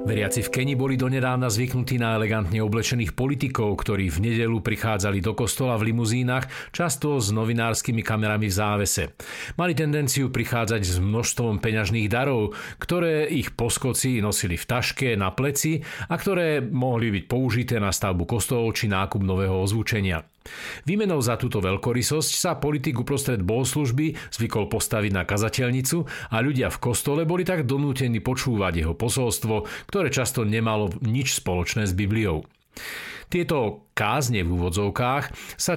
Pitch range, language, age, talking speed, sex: 105-135 Hz, Slovak, 50-69, 145 wpm, male